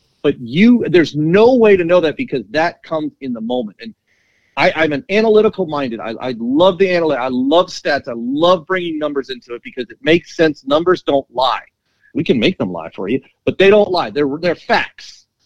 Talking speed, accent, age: 215 wpm, American, 40-59